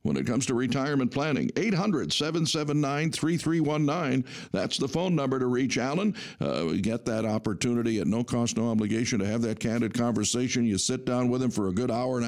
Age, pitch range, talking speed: 60-79, 115-145 Hz, 185 wpm